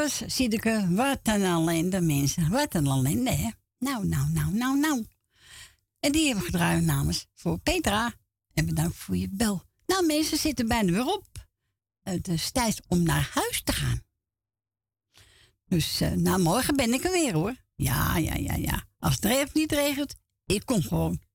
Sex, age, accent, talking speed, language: female, 60-79, Dutch, 170 wpm, Dutch